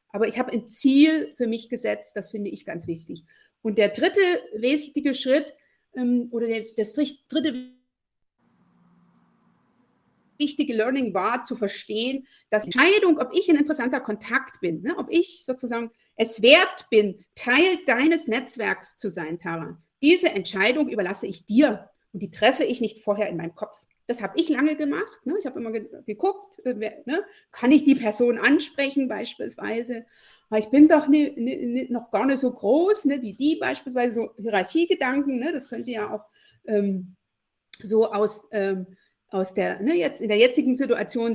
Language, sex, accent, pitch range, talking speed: German, female, German, 215-290 Hz, 155 wpm